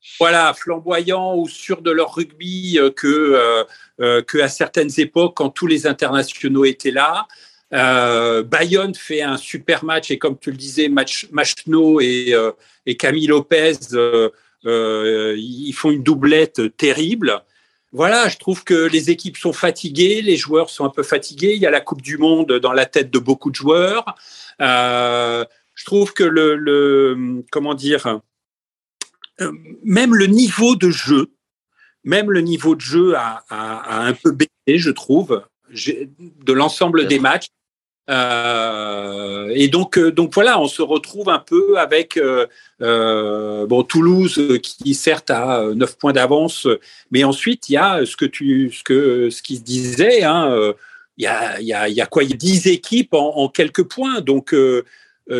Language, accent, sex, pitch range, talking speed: French, French, male, 130-180 Hz, 170 wpm